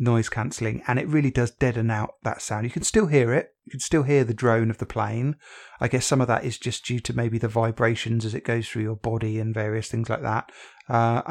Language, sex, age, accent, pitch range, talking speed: English, male, 30-49, British, 115-130 Hz, 255 wpm